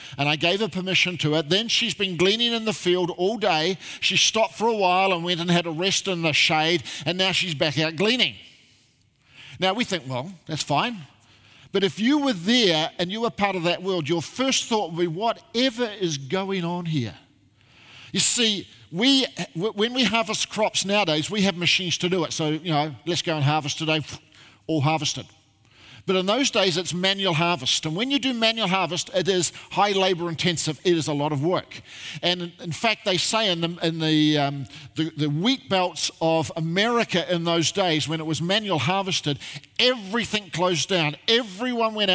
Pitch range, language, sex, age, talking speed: 155-200 Hz, English, male, 50-69, 200 wpm